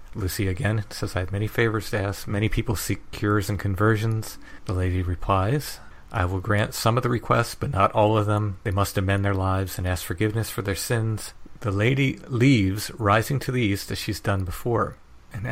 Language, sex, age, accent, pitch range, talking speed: English, male, 40-59, American, 95-115 Hz, 205 wpm